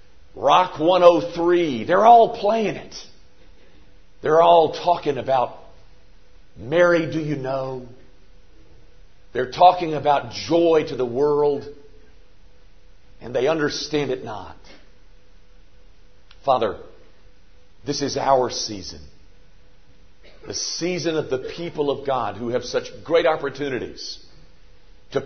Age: 50-69